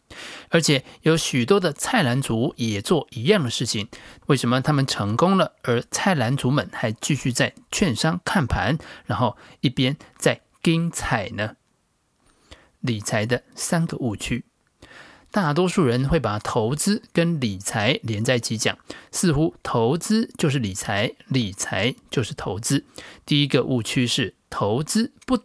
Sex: male